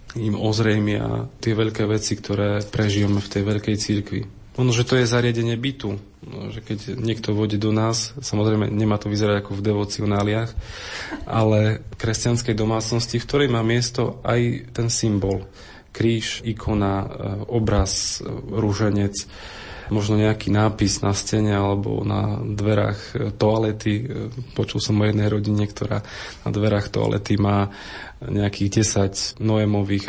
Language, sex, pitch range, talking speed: Slovak, male, 100-115 Hz, 140 wpm